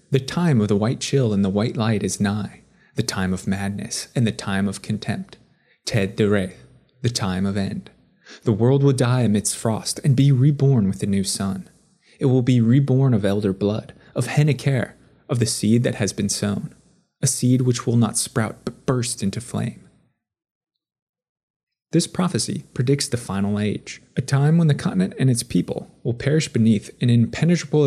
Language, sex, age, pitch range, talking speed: English, male, 20-39, 105-130 Hz, 185 wpm